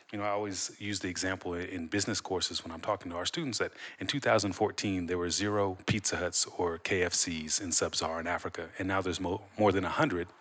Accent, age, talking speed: American, 30-49, 200 wpm